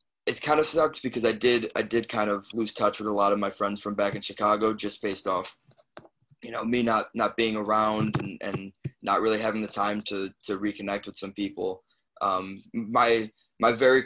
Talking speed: 215 wpm